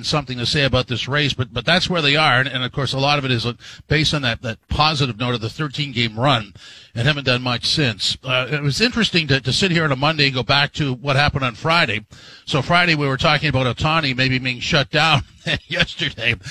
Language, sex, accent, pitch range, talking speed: English, male, American, 125-155 Hz, 245 wpm